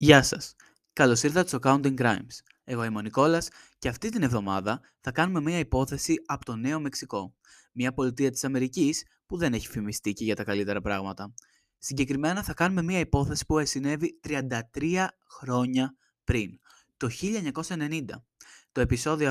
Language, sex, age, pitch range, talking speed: Greek, male, 20-39, 120-155 Hz, 155 wpm